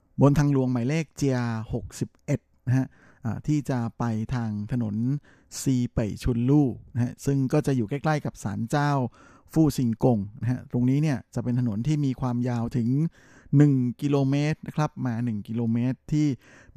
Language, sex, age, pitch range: Thai, male, 20-39, 115-140 Hz